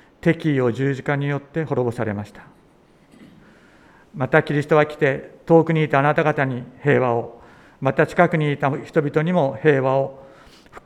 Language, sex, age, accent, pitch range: Japanese, male, 50-69, native, 125-155 Hz